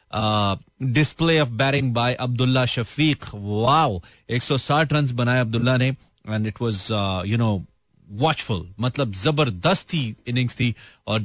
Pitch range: 105-135 Hz